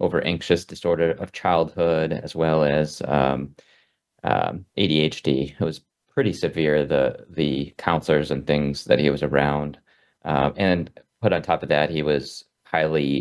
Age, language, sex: 30-49, English, male